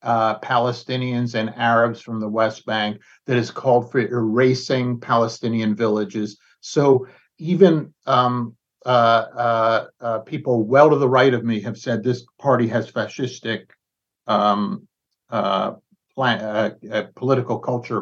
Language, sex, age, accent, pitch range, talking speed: English, male, 60-79, American, 115-145 Hz, 135 wpm